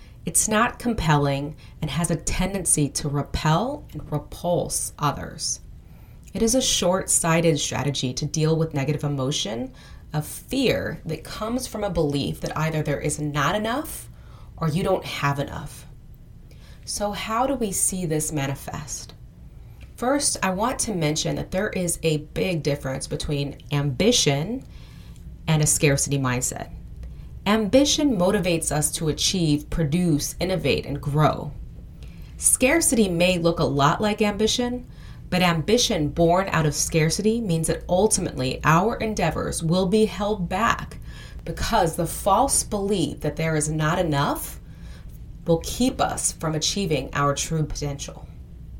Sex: female